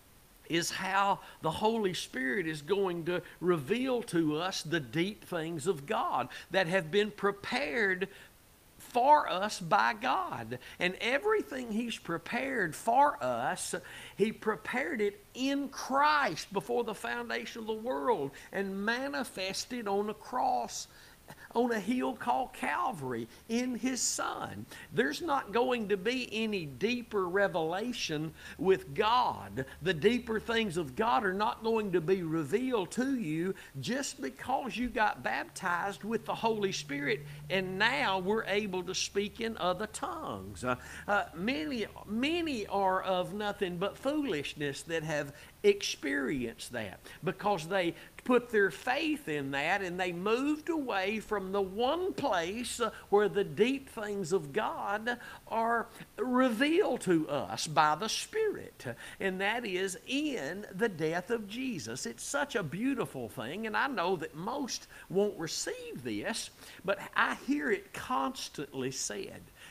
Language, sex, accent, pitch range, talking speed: English, male, American, 175-240 Hz, 140 wpm